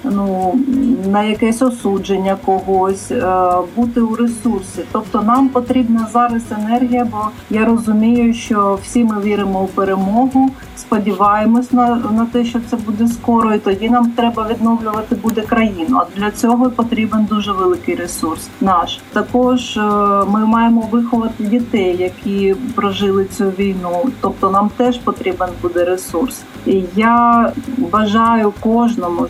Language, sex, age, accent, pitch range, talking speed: Ukrainian, female, 40-59, native, 200-240 Hz, 130 wpm